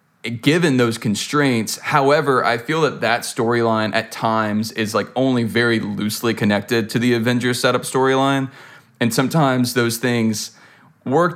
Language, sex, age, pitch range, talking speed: English, male, 20-39, 110-130 Hz, 145 wpm